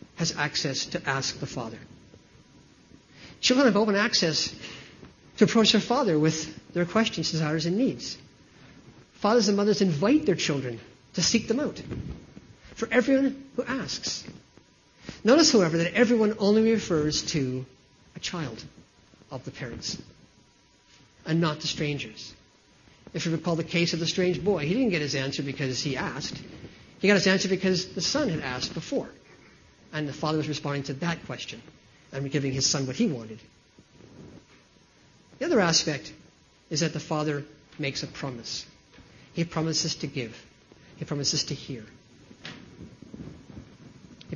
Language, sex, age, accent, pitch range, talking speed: English, male, 50-69, American, 140-200 Hz, 150 wpm